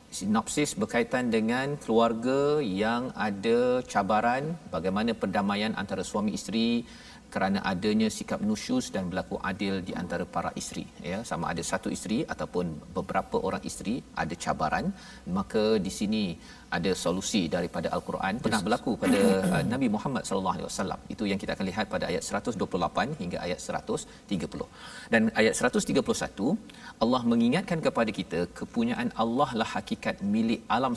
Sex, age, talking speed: male, 40-59, 140 wpm